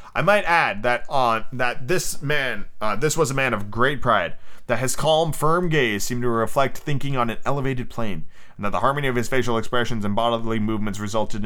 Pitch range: 110-160 Hz